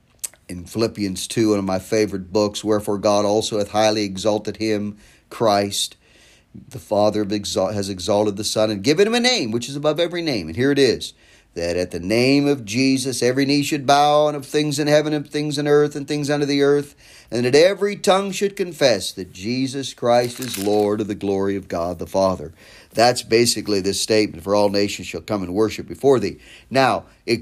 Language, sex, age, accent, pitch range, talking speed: English, male, 40-59, American, 100-140 Hz, 205 wpm